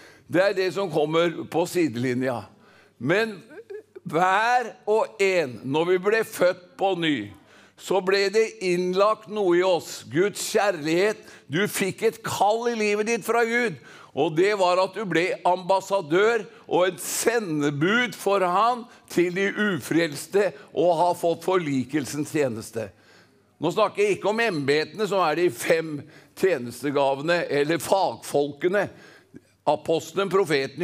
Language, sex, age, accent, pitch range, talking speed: English, male, 60-79, Swedish, 150-210 Hz, 135 wpm